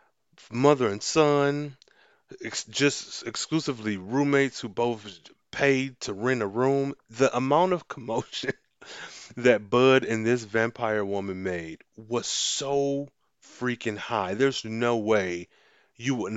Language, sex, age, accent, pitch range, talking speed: English, male, 30-49, American, 100-130 Hz, 125 wpm